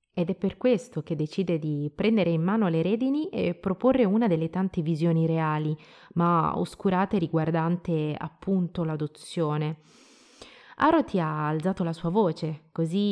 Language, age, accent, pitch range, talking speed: Italian, 30-49, native, 160-205 Hz, 140 wpm